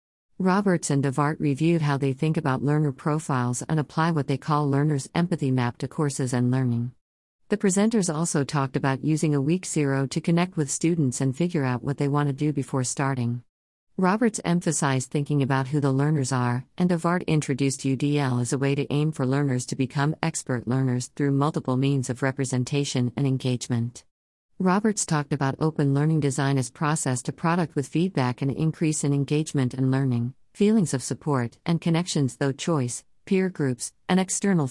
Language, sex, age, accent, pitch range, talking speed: English, female, 50-69, American, 135-160 Hz, 180 wpm